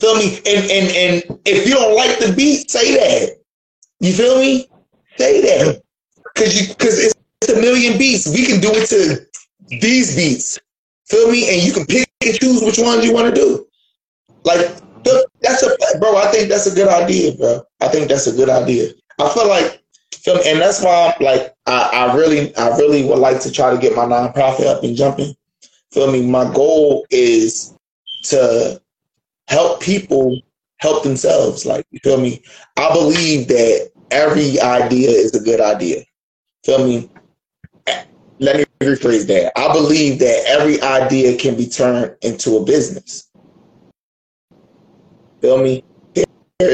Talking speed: 170 wpm